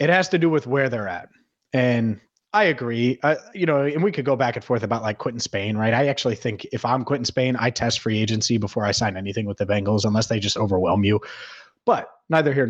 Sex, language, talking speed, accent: male, English, 245 wpm, American